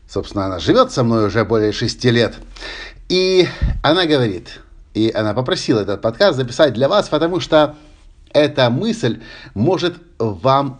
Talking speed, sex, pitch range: 145 wpm, male, 105-150 Hz